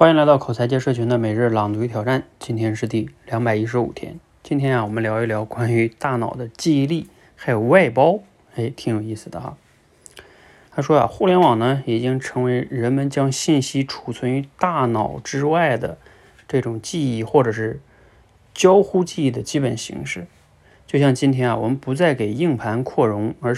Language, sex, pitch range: Chinese, male, 115-155 Hz